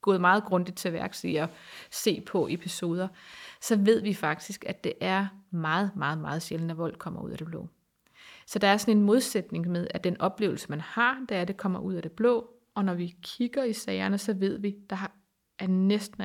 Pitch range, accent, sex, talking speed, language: 180-220 Hz, native, female, 230 wpm, Danish